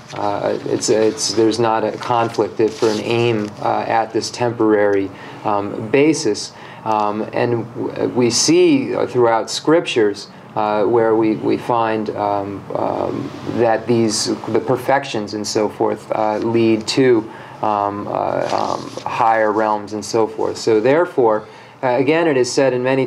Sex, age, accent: male, 30-49, American